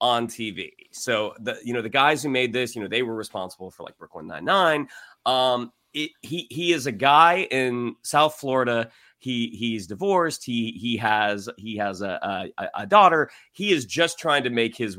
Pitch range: 110-145 Hz